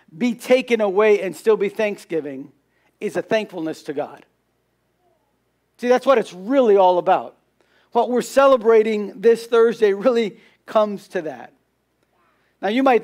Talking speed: 145 wpm